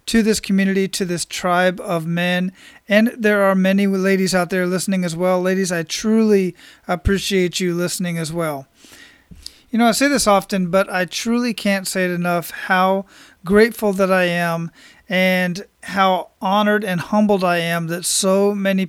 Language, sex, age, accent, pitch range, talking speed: English, male, 40-59, American, 180-205 Hz, 170 wpm